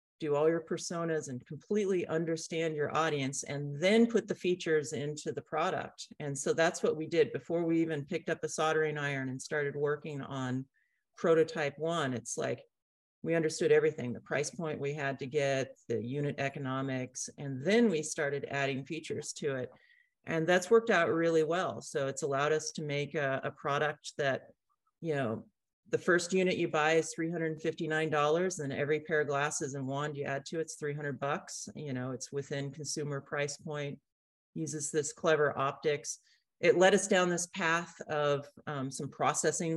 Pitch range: 140-165 Hz